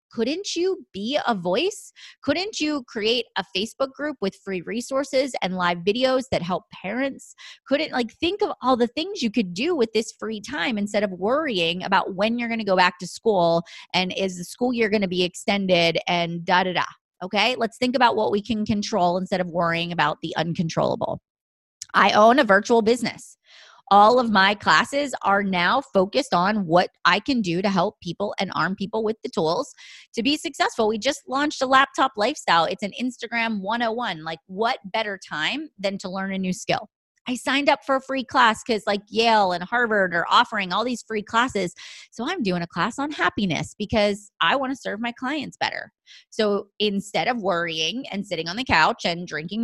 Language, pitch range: English, 185-250 Hz